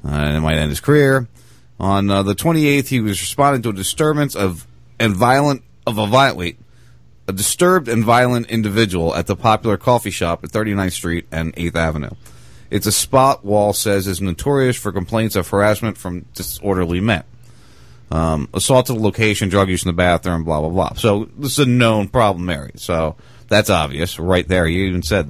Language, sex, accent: English, male, American